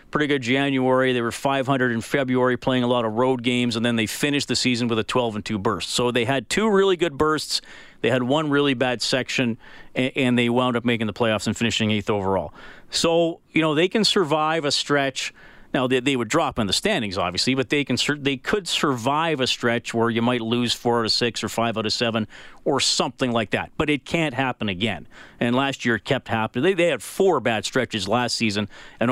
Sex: male